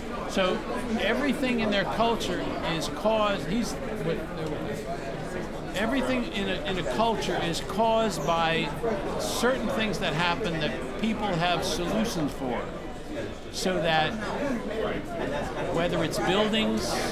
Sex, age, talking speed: male, 50-69, 105 wpm